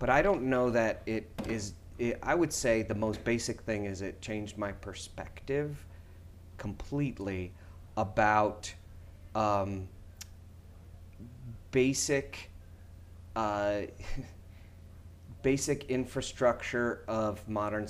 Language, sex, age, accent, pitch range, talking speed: English, male, 30-49, American, 90-115 Hz, 95 wpm